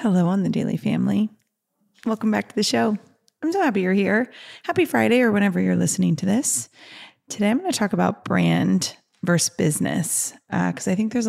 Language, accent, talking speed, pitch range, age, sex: English, American, 195 wpm, 165-210 Hz, 30-49, female